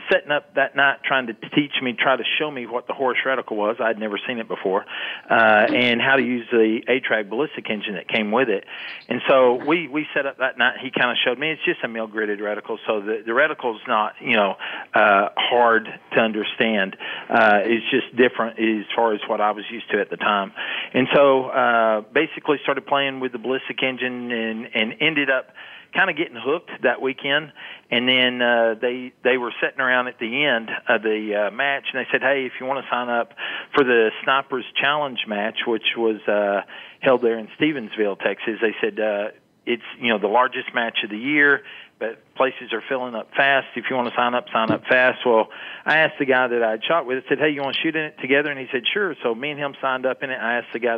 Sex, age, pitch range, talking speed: male, 40-59, 115-140 Hz, 235 wpm